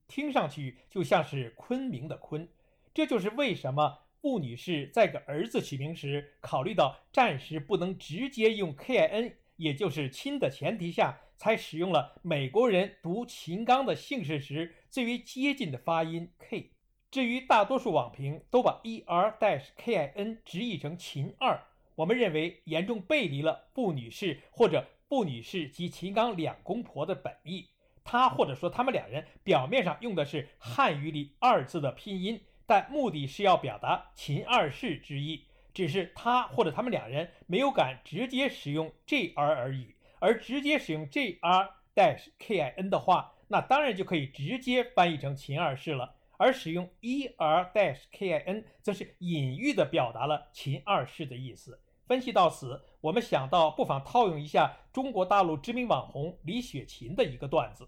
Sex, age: male, 60-79